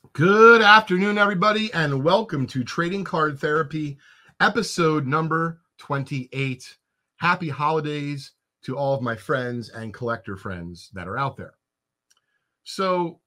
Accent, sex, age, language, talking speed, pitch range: American, male, 40-59, English, 120 wpm, 125-180 Hz